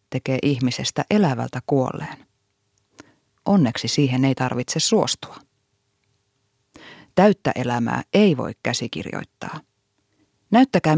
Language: Finnish